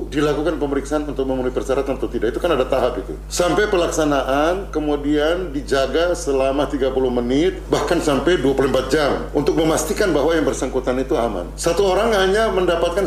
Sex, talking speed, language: male, 155 wpm, Indonesian